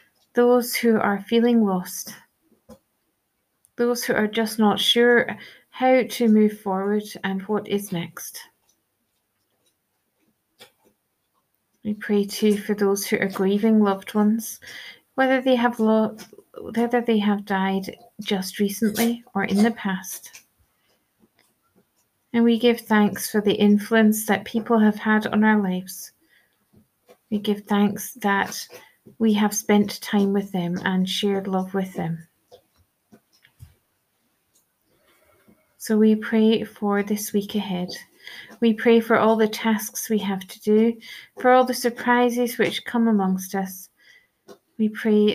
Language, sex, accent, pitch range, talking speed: English, female, British, 200-230 Hz, 130 wpm